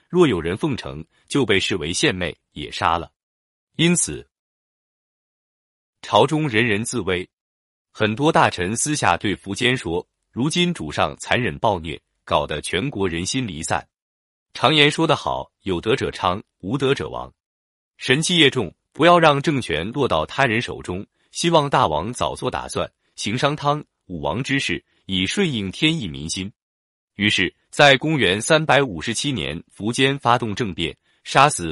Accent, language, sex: native, Chinese, male